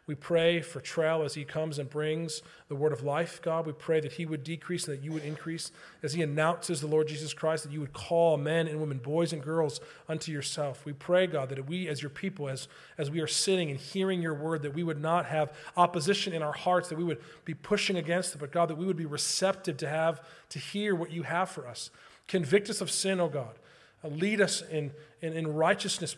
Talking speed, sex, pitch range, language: 245 wpm, male, 150-170 Hz, English